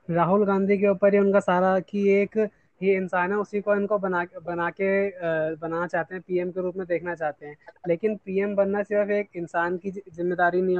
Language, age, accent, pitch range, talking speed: Hindi, 20-39, native, 170-200 Hz, 205 wpm